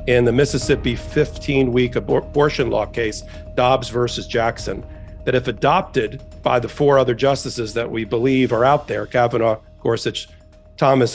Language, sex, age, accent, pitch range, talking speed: English, male, 50-69, American, 120-140 Hz, 145 wpm